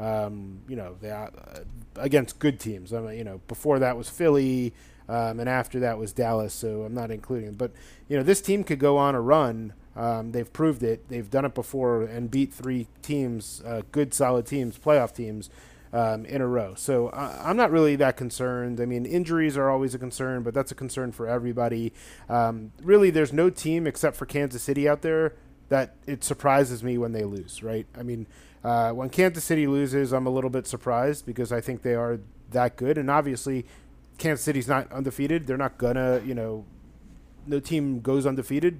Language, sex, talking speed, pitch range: English, male, 200 wpm, 115-140 Hz